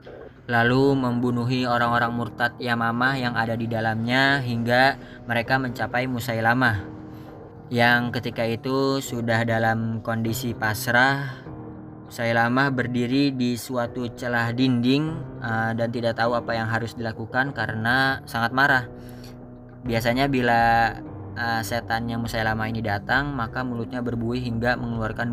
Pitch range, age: 110-125 Hz, 20-39